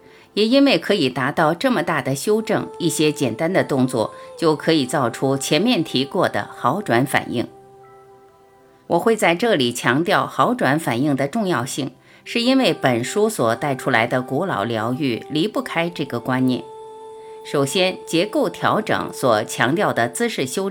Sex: female